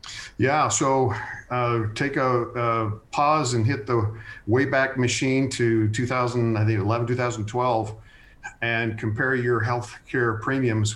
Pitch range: 110-125 Hz